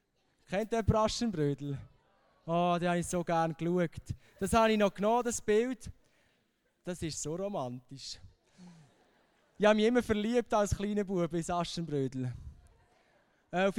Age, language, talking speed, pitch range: 20-39, English, 145 wpm, 165-215 Hz